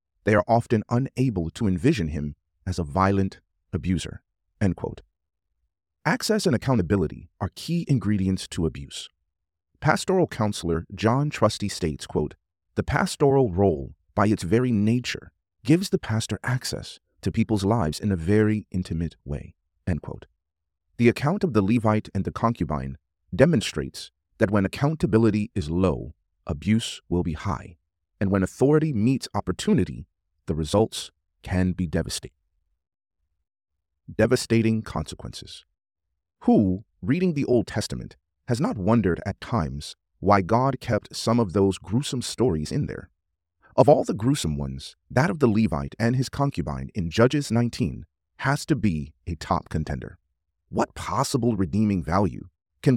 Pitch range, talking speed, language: 80-115 Hz, 140 wpm, English